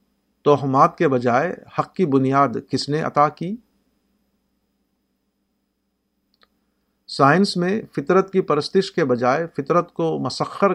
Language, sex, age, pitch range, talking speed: Urdu, male, 50-69, 140-195 Hz, 110 wpm